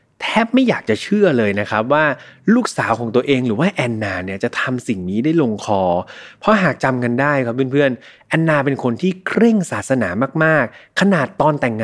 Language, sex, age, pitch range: Thai, male, 20-39, 115-165 Hz